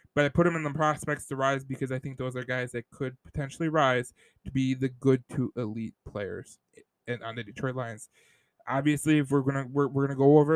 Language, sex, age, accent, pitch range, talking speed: English, male, 20-39, American, 130-155 Hz, 225 wpm